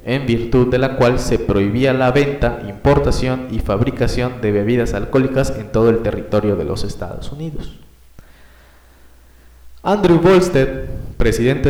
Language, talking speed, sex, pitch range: Spanish, 135 wpm, male, 110-145 Hz